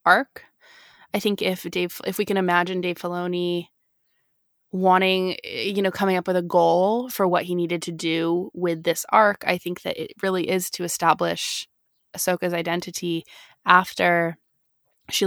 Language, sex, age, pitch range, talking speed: English, female, 20-39, 175-195 Hz, 155 wpm